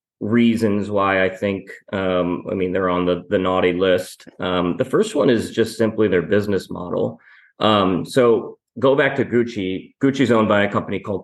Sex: male